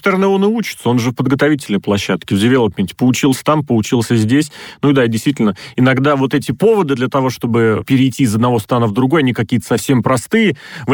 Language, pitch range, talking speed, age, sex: Russian, 115-145 Hz, 195 wpm, 30-49, male